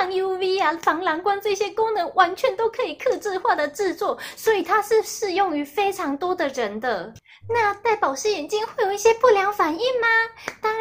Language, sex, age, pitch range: Chinese, female, 20-39, 290-430 Hz